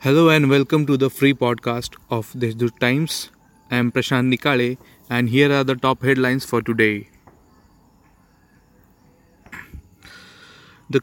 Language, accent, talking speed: Marathi, native, 125 wpm